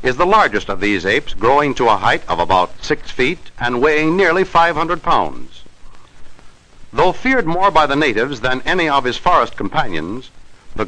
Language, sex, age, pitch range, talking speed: English, male, 60-79, 130-180 Hz, 175 wpm